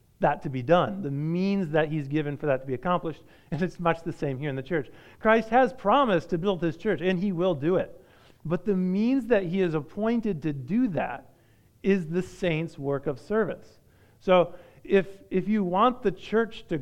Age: 40-59